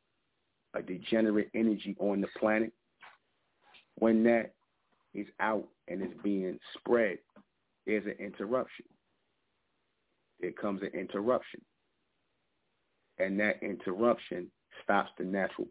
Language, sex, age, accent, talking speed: English, male, 40-59, American, 105 wpm